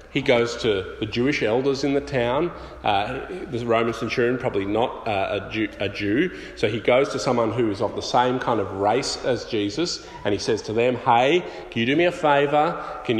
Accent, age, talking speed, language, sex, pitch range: Australian, 30-49, 215 wpm, English, male, 105-145 Hz